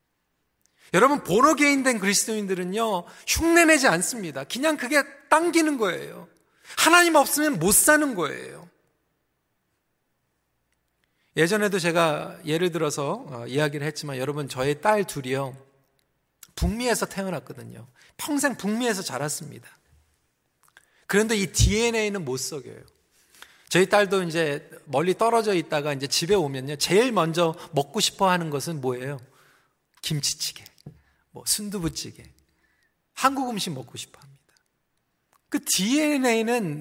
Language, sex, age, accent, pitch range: Korean, male, 40-59, native, 140-210 Hz